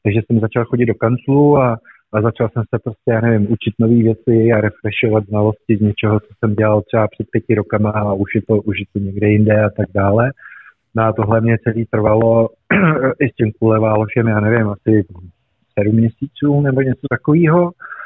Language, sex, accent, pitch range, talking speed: Czech, male, native, 110-135 Hz, 195 wpm